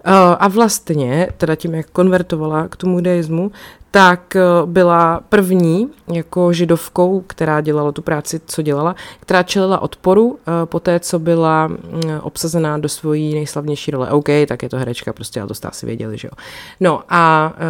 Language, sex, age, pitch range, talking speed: Czech, female, 30-49, 145-170 Hz, 160 wpm